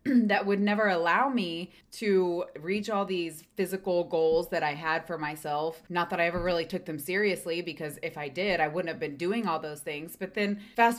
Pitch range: 160-205 Hz